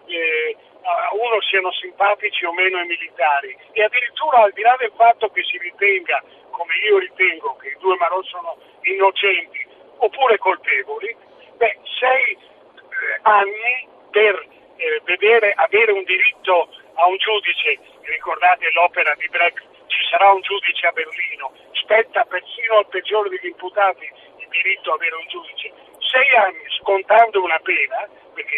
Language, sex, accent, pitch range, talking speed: Italian, male, native, 175-275 Hz, 150 wpm